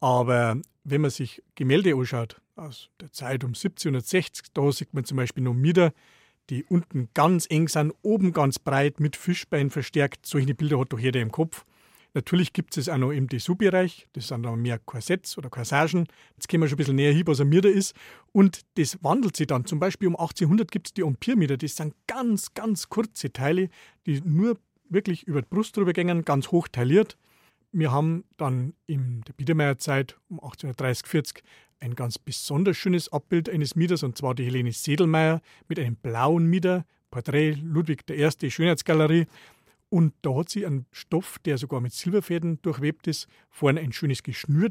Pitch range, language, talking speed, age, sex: 135-180 Hz, German, 185 wpm, 40-59, male